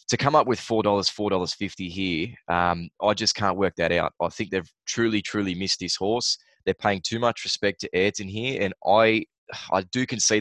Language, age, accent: English, 20-39, Australian